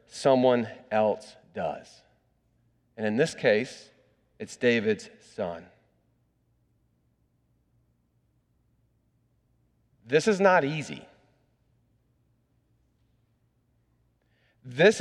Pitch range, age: 120-195 Hz, 40-59